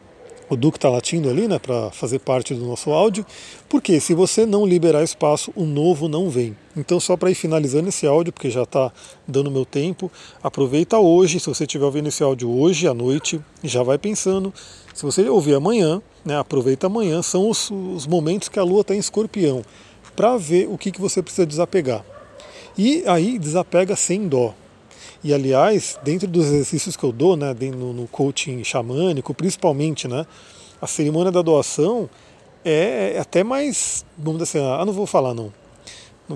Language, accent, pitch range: Portuguese, Brazilian, 135-180 Hz